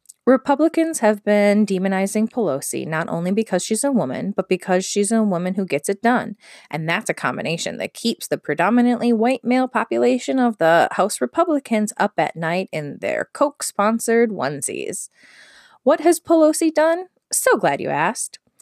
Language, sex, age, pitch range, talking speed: English, female, 20-39, 180-265 Hz, 160 wpm